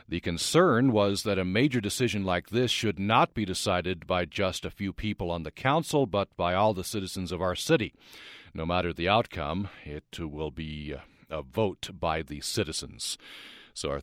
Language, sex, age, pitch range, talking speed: English, male, 50-69, 85-110 Hz, 185 wpm